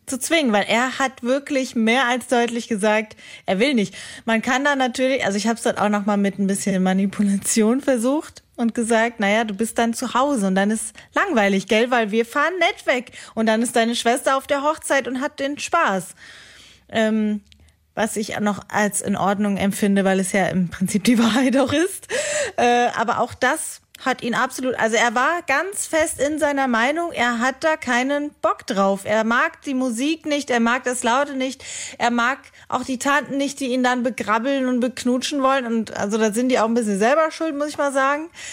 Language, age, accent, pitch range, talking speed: German, 30-49, German, 220-270 Hz, 210 wpm